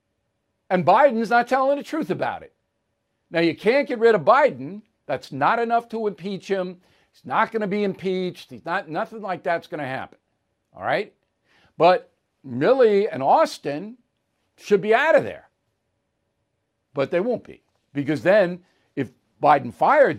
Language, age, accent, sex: English, 60-79, American, male